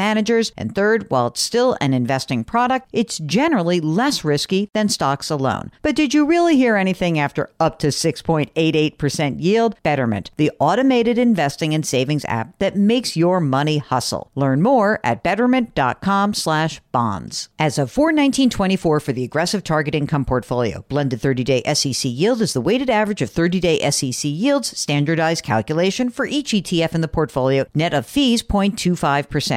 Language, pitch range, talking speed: English, 140-225 Hz, 155 wpm